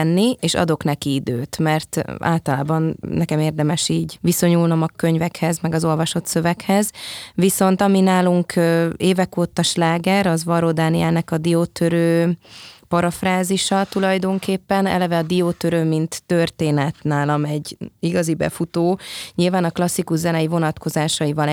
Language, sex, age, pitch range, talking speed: Hungarian, female, 20-39, 155-180 Hz, 120 wpm